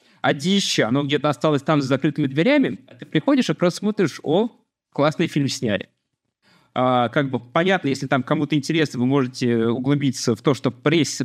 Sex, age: male, 20-39